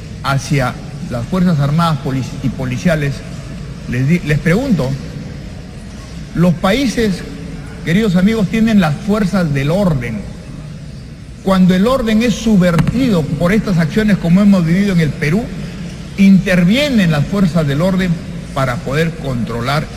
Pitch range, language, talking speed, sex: 145-195 Hz, Spanish, 125 wpm, male